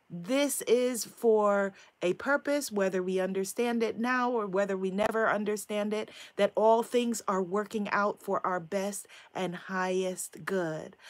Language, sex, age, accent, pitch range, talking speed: English, female, 30-49, American, 195-305 Hz, 150 wpm